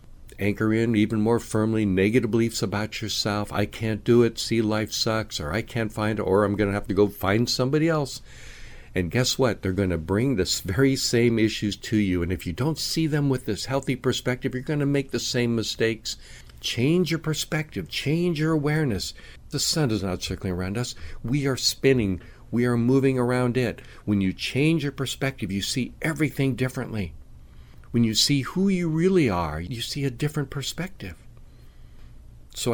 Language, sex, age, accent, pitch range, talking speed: English, male, 60-79, American, 100-135 Hz, 190 wpm